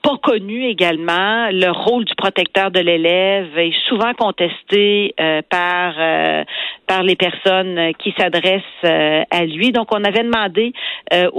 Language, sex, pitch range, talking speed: French, female, 170-215 Hz, 150 wpm